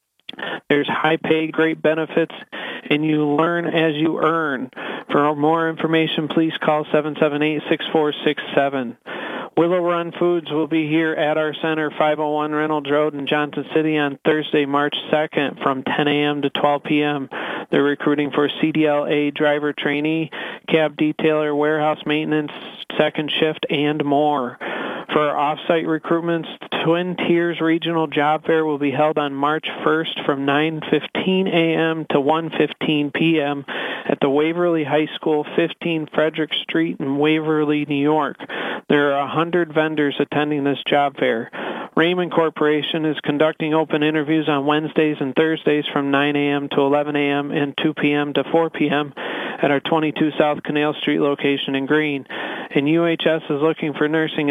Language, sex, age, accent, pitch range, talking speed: English, male, 40-59, American, 145-160 Hz, 145 wpm